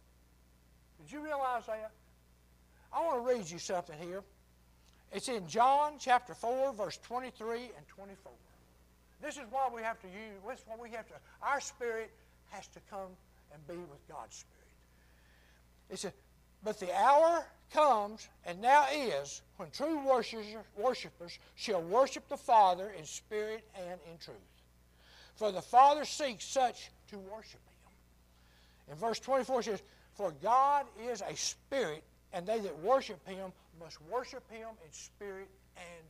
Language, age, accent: English, 60-79, American